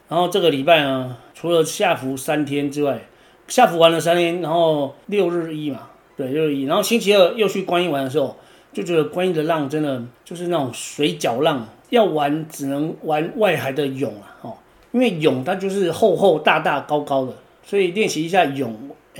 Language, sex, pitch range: Chinese, male, 135-175 Hz